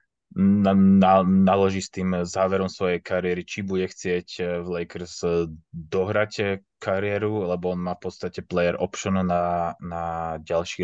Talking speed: 140 wpm